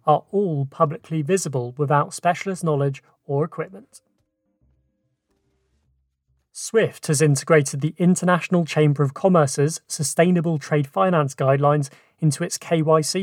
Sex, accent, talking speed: male, British, 110 wpm